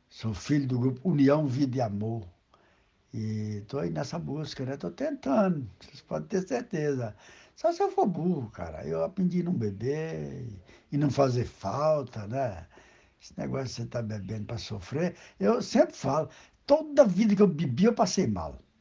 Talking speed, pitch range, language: 180 wpm, 115-155 Hz, Portuguese